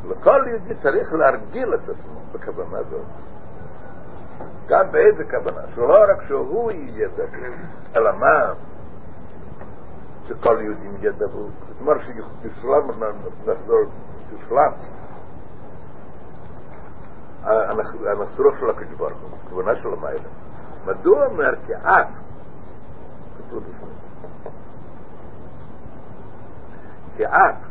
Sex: male